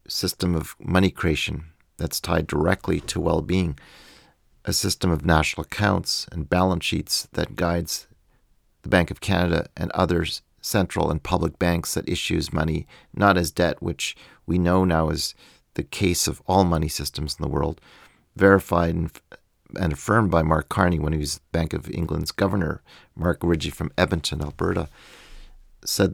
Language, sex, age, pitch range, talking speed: English, male, 40-59, 80-90 Hz, 155 wpm